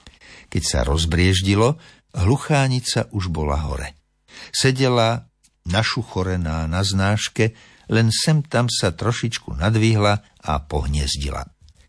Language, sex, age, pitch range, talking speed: Slovak, male, 60-79, 85-115 Hz, 100 wpm